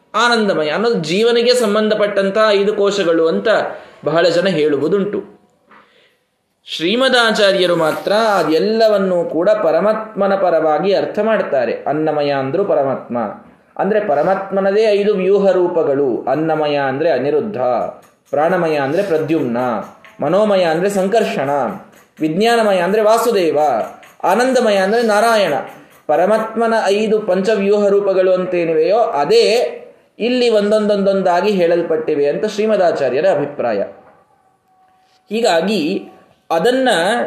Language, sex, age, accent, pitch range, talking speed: Kannada, male, 20-39, native, 180-230 Hz, 90 wpm